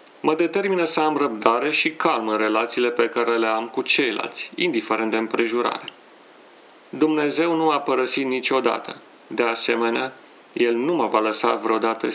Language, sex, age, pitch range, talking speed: Romanian, male, 40-59, 115-145 Hz, 155 wpm